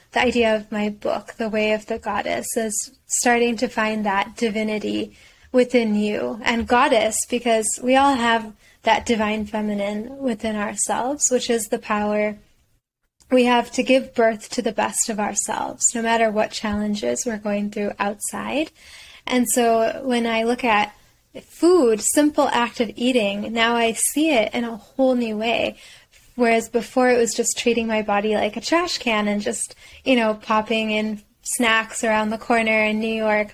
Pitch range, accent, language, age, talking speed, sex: 215-245 Hz, American, English, 10-29, 170 wpm, female